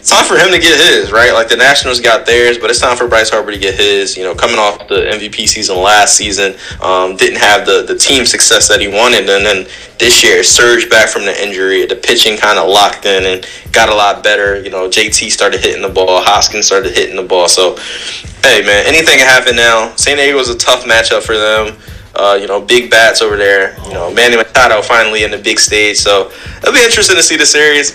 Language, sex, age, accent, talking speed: English, male, 20-39, American, 245 wpm